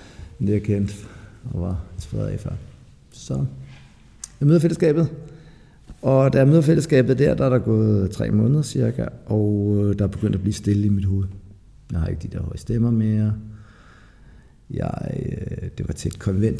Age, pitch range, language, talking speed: 50-69, 105-140 Hz, Danish, 175 wpm